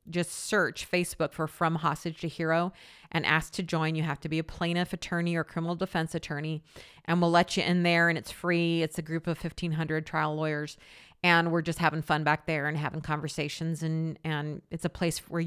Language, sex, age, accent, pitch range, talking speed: English, female, 40-59, American, 160-185 Hz, 215 wpm